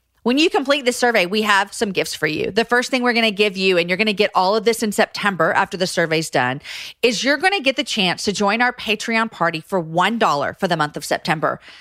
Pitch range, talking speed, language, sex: 190-255 Hz, 265 wpm, English, female